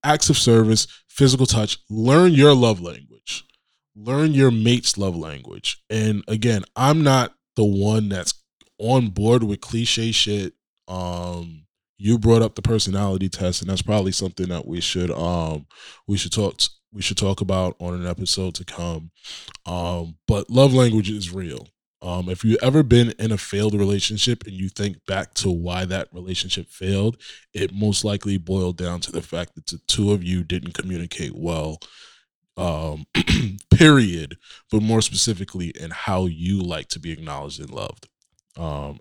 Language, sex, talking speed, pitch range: English, male, 165 wpm, 85-110 Hz